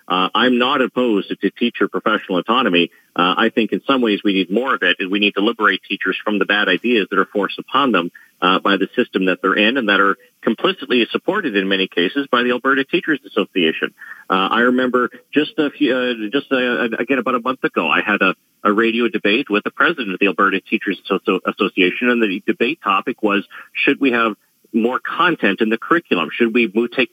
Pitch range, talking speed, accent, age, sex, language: 105-130 Hz, 220 wpm, American, 40-59, male, English